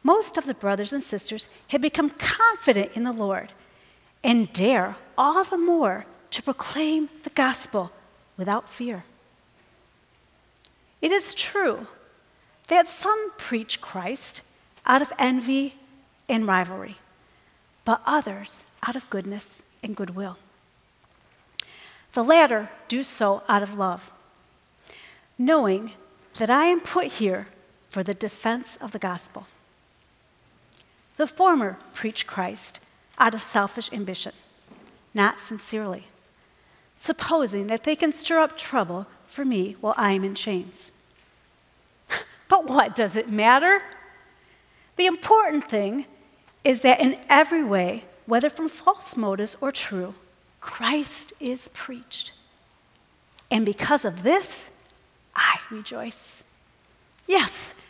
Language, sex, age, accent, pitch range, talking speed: English, female, 40-59, American, 205-310 Hz, 120 wpm